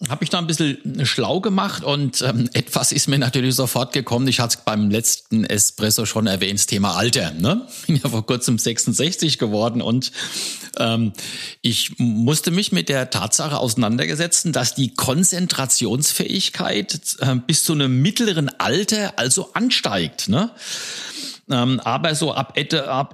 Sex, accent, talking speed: male, German, 155 wpm